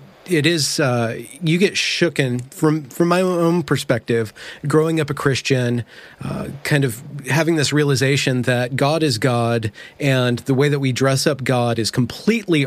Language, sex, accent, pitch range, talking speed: English, male, American, 120-150 Hz, 165 wpm